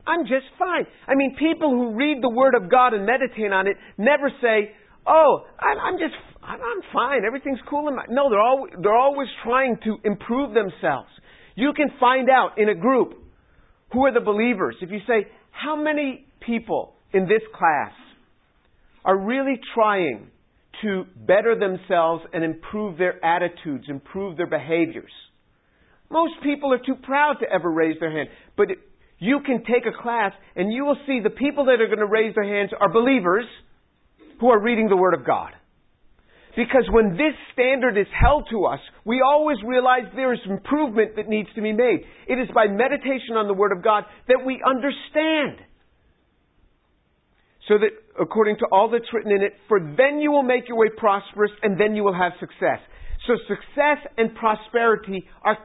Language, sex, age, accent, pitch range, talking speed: English, male, 50-69, American, 205-270 Hz, 180 wpm